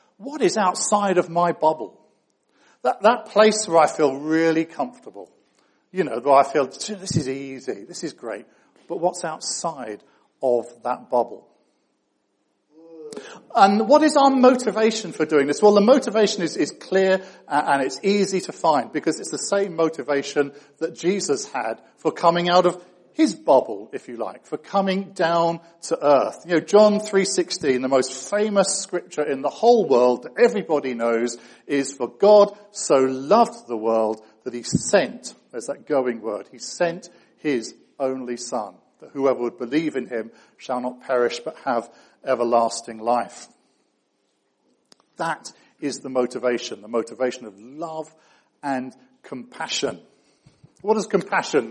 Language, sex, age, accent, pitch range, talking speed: English, male, 50-69, British, 130-200 Hz, 155 wpm